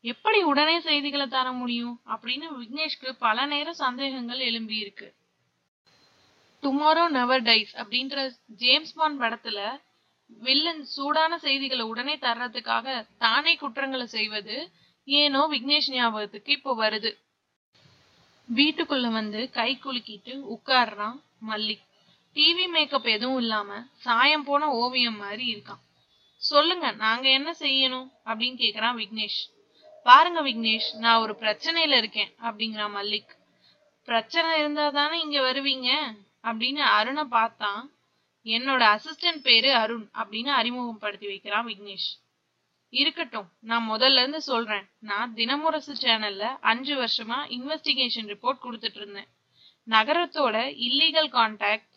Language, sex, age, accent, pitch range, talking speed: Tamil, female, 20-39, native, 225-280 Hz, 70 wpm